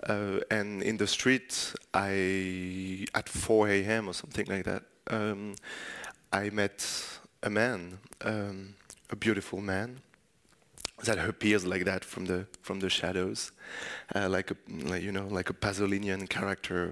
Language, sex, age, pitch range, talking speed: English, male, 30-49, 100-115 Hz, 145 wpm